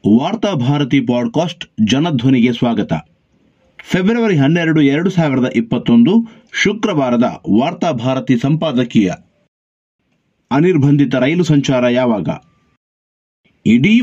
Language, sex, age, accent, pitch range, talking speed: Kannada, male, 50-69, native, 130-170 Hz, 75 wpm